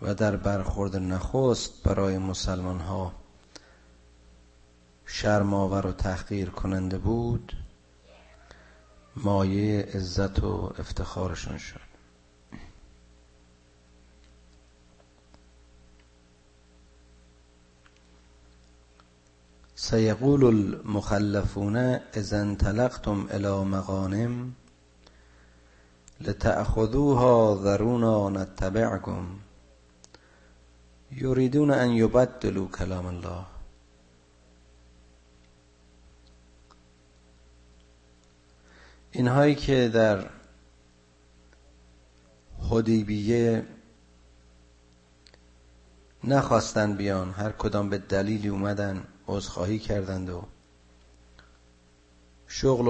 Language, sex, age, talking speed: Persian, male, 50-69, 50 wpm